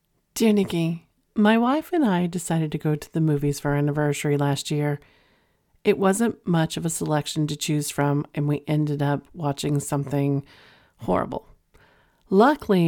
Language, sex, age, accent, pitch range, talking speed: English, female, 40-59, American, 145-175 Hz, 160 wpm